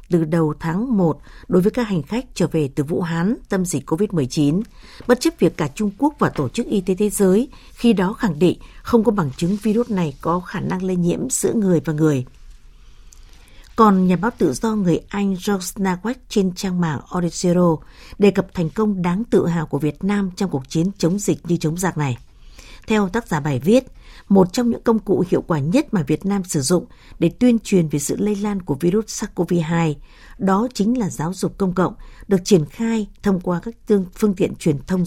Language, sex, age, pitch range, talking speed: Vietnamese, female, 60-79, 165-210 Hz, 215 wpm